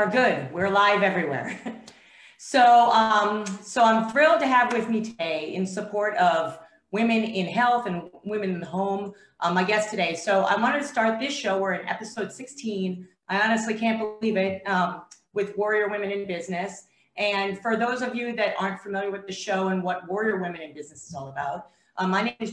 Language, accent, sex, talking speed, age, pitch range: English, American, female, 200 wpm, 40-59, 175-215 Hz